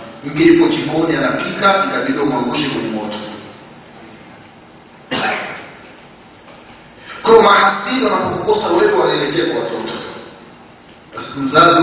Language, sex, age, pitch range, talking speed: Swahili, male, 50-69, 125-170 Hz, 85 wpm